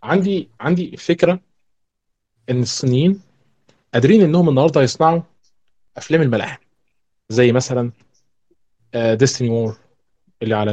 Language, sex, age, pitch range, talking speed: Arabic, male, 20-39, 115-150 Hz, 95 wpm